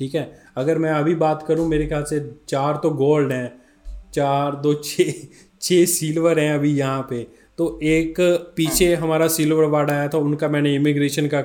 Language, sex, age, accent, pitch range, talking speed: Hindi, male, 20-39, native, 140-160 Hz, 185 wpm